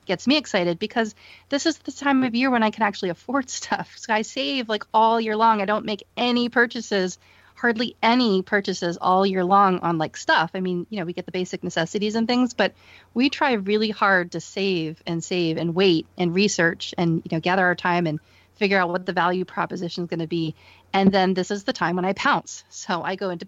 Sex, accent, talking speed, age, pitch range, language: female, American, 235 wpm, 30-49, 175-220 Hz, English